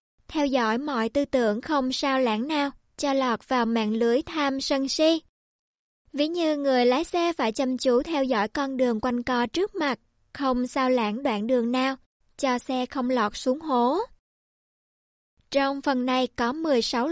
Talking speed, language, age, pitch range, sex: 175 wpm, Vietnamese, 20-39, 250-295 Hz, male